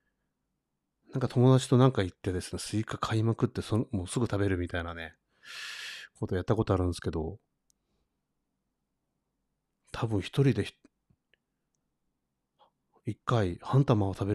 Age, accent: 40-59, native